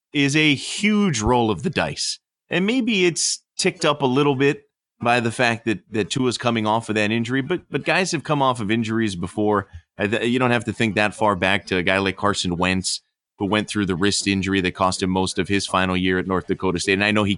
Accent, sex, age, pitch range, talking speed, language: American, male, 30-49, 95-135 Hz, 245 wpm, English